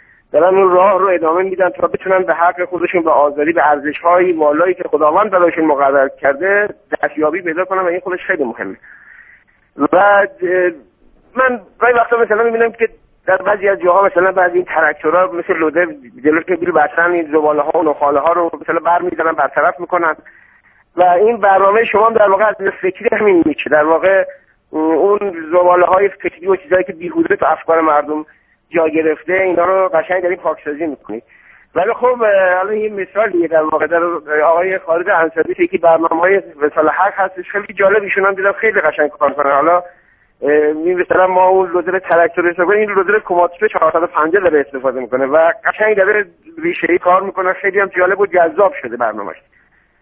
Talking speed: 165 wpm